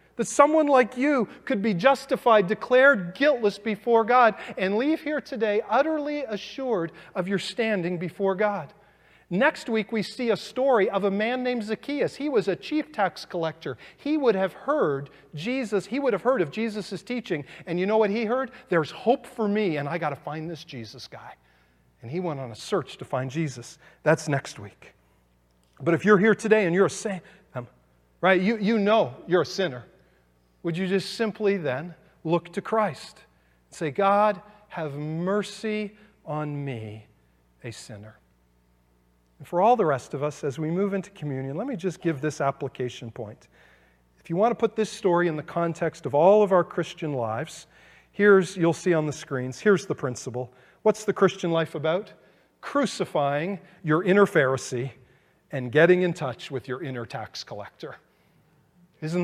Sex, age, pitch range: male, 40-59, 140-215 Hz